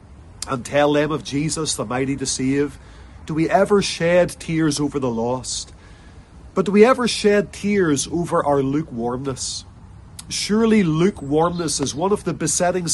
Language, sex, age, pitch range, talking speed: English, male, 40-59, 135-175 Hz, 150 wpm